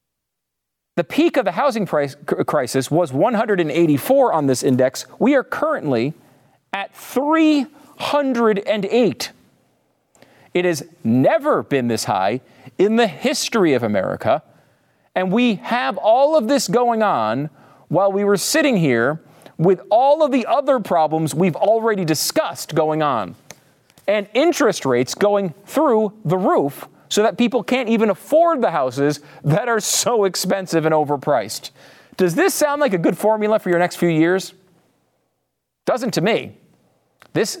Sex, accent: male, American